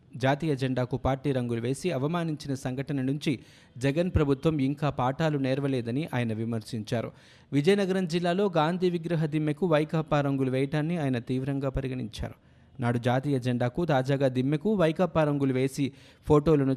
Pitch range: 130-155 Hz